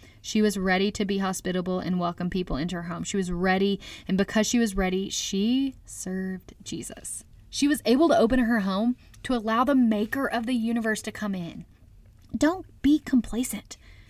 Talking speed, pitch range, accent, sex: 185 wpm, 175-215 Hz, American, female